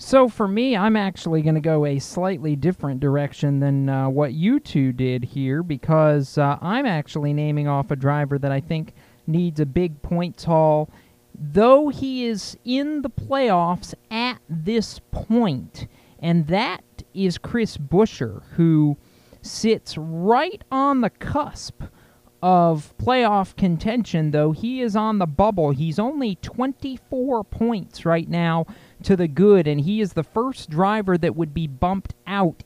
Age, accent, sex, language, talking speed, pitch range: 40-59, American, male, English, 155 wpm, 150-200 Hz